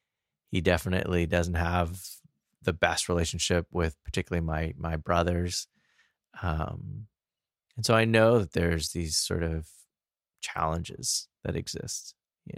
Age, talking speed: 20-39, 125 wpm